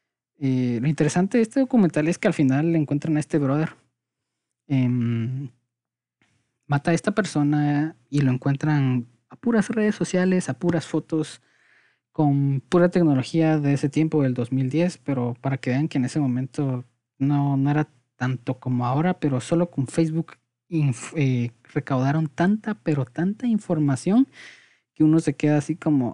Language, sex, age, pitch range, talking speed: Spanish, male, 20-39, 125-155 Hz, 160 wpm